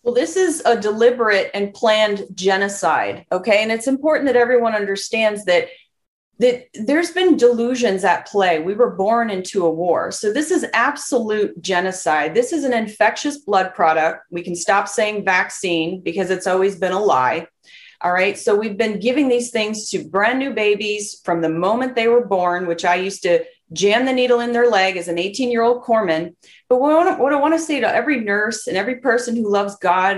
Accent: American